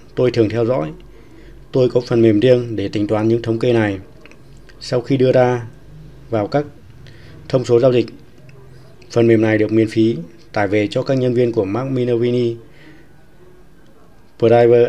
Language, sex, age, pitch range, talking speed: Vietnamese, male, 20-39, 110-130 Hz, 170 wpm